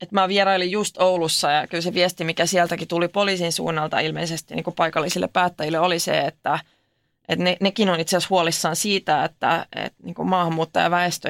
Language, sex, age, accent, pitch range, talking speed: Finnish, female, 20-39, native, 165-200 Hz, 180 wpm